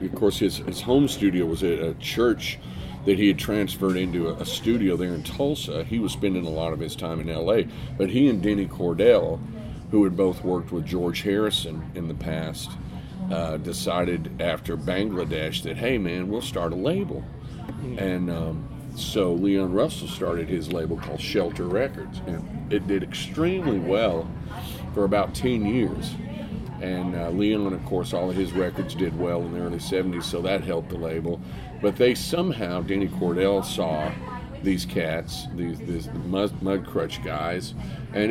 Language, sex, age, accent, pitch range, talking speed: English, male, 50-69, American, 85-105 Hz, 170 wpm